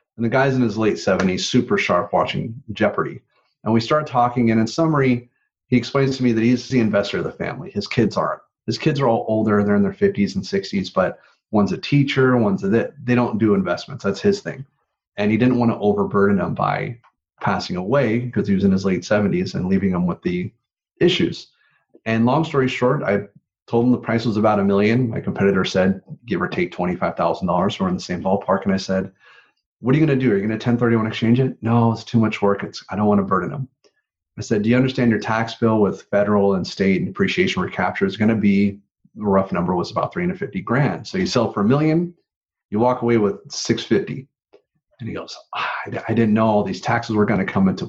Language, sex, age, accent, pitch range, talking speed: English, male, 30-49, American, 105-140 Hz, 230 wpm